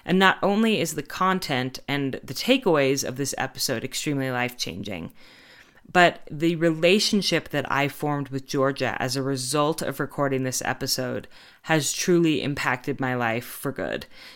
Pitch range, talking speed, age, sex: 135-165 Hz, 150 wpm, 30-49, female